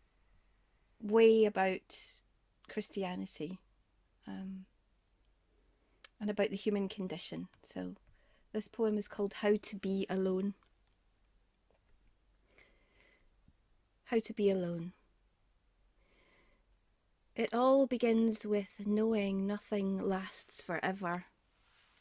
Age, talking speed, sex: 30-49, 80 wpm, female